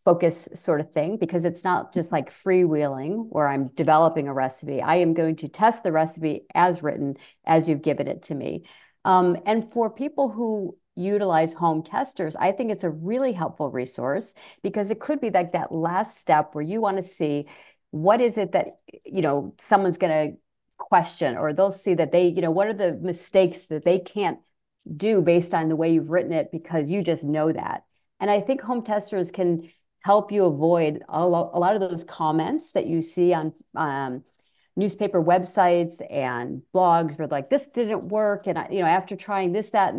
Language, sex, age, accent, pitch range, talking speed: English, female, 40-59, American, 160-200 Hz, 200 wpm